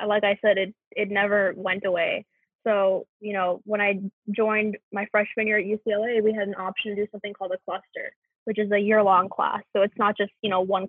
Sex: female